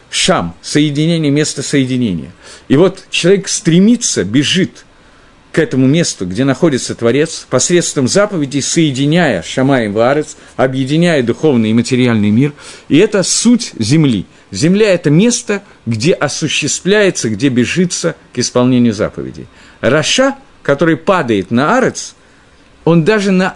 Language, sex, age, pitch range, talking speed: Russian, male, 50-69, 120-175 Hz, 120 wpm